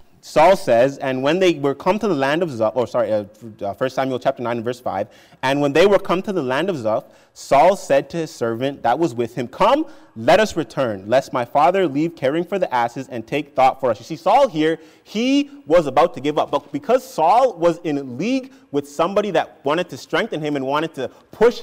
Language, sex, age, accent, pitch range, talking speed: English, male, 30-49, American, 135-185 Hz, 235 wpm